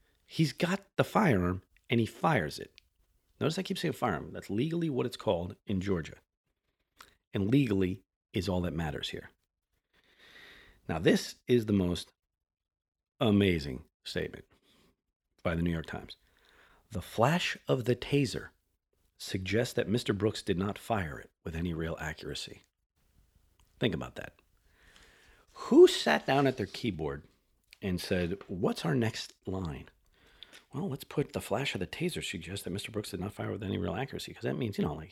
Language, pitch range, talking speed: English, 90-125 Hz, 165 wpm